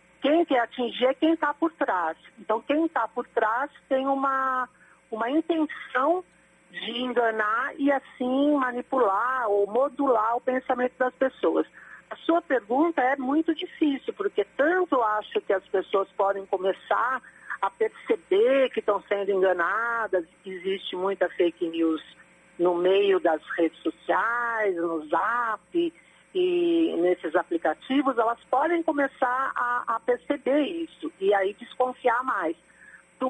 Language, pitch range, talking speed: Portuguese, 205-290 Hz, 135 wpm